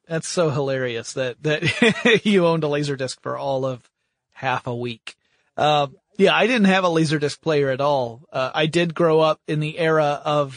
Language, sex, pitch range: English, male, 130-160 Hz